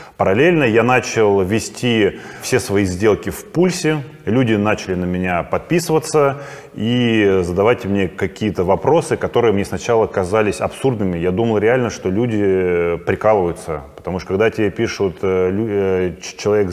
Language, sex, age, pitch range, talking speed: Russian, male, 20-39, 90-105 Hz, 130 wpm